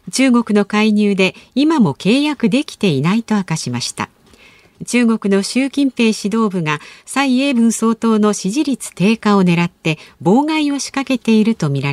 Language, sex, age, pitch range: Japanese, female, 50-69, 170-245 Hz